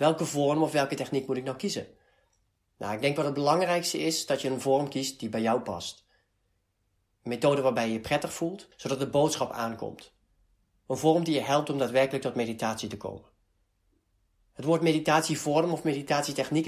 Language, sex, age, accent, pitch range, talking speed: Dutch, male, 40-59, Dutch, 105-150 Hz, 185 wpm